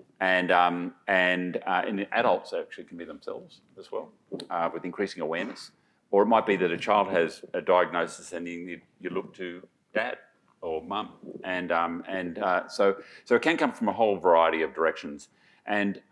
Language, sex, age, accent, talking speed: English, male, 40-59, Australian, 185 wpm